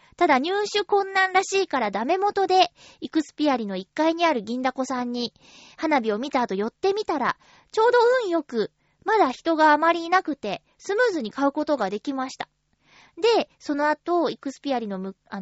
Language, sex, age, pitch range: Japanese, female, 20-39, 230-365 Hz